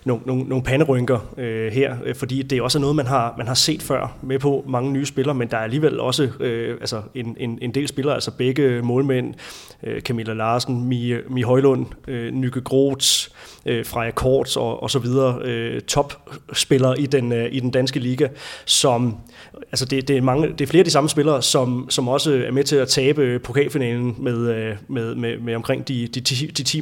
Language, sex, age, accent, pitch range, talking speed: Danish, male, 30-49, native, 120-140 Hz, 205 wpm